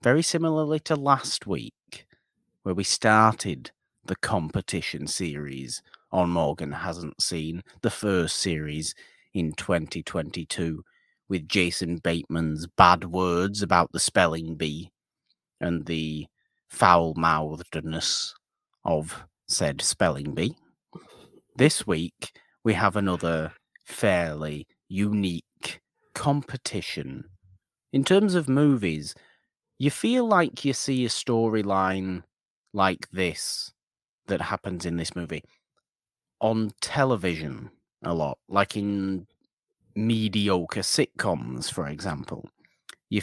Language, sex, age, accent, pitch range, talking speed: English, male, 30-49, British, 85-115 Hz, 100 wpm